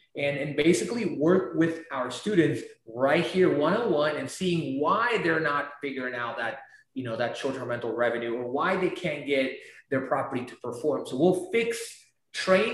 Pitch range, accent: 135-180 Hz, American